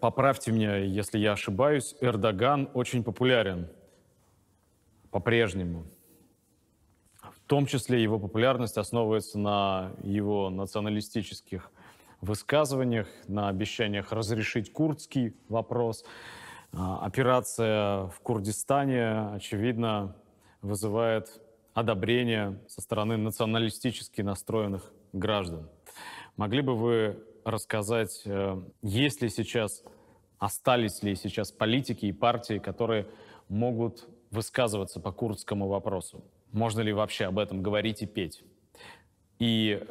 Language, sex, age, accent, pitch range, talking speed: Russian, male, 30-49, native, 100-120 Hz, 95 wpm